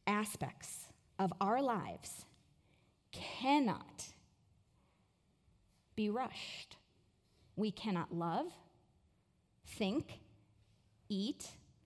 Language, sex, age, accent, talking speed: English, female, 40-59, American, 60 wpm